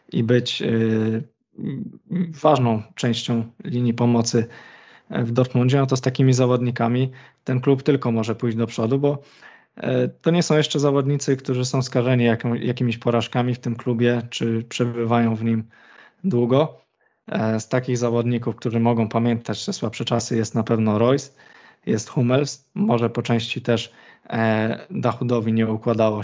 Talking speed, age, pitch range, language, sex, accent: 140 wpm, 20-39, 115-135 Hz, Polish, male, native